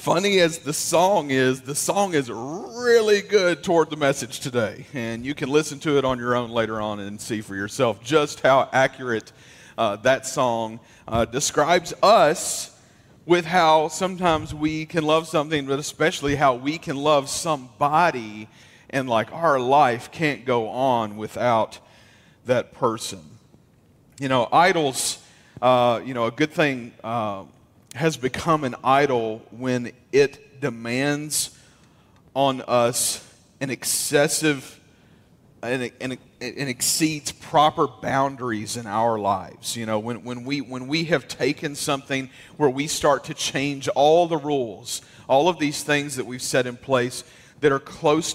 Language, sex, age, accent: English, male, 40-59, American